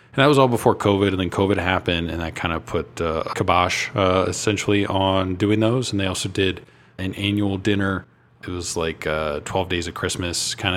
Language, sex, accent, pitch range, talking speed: English, male, American, 90-105 Hz, 225 wpm